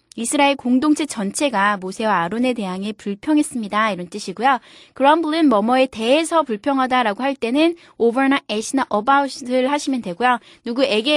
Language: Korean